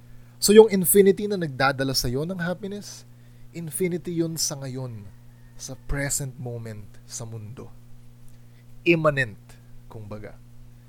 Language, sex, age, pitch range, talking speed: Filipino, male, 20-39, 120-145 Hz, 110 wpm